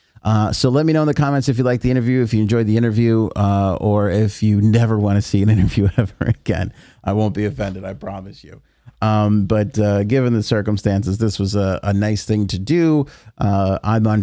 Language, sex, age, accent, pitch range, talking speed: English, male, 30-49, American, 100-115 Hz, 230 wpm